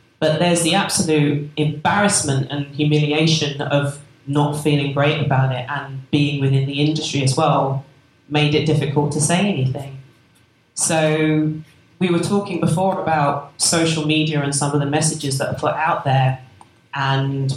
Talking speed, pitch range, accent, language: 155 wpm, 140-160 Hz, British, English